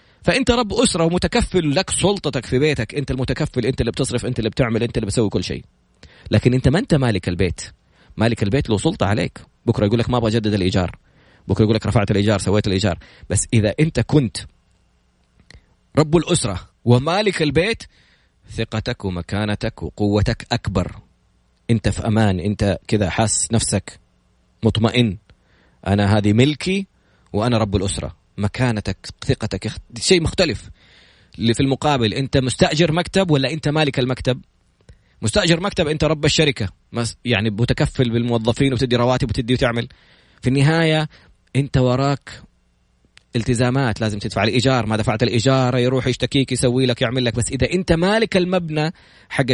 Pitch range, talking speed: 110-145 Hz, 145 wpm